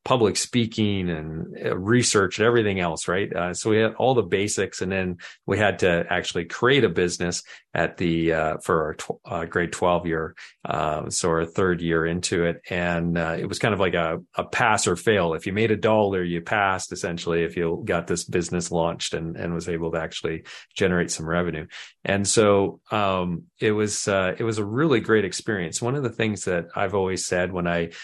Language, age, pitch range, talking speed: English, 40-59, 85-105 Hz, 210 wpm